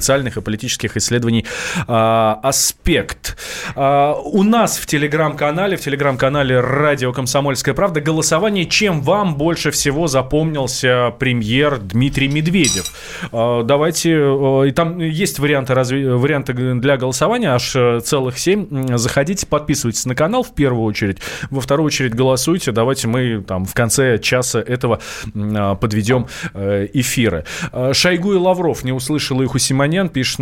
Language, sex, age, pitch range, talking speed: Russian, male, 20-39, 125-155 Hz, 120 wpm